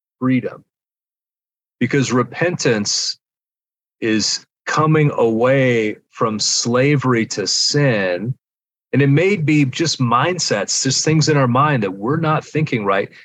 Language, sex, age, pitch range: English, male, 40-59, 110-135 Hz